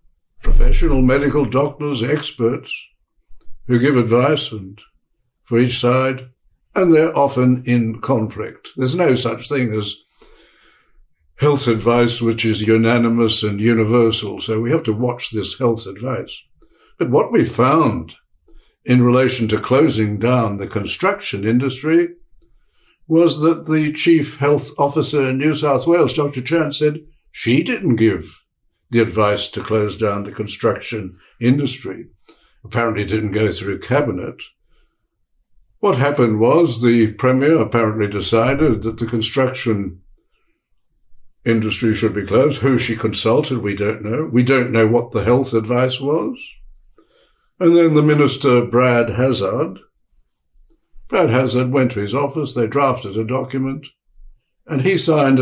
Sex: male